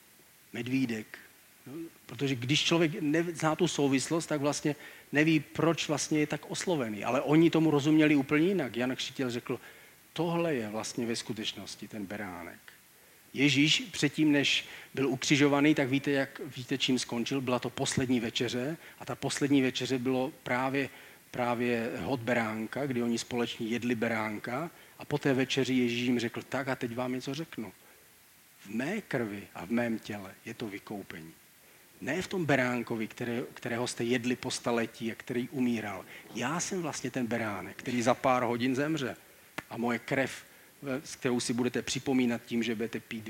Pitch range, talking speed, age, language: 115-145 Hz, 165 wpm, 40-59, Czech